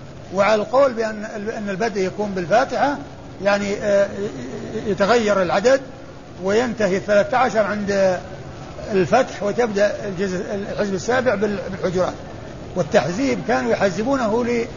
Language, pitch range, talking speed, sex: Arabic, 185-220 Hz, 85 wpm, male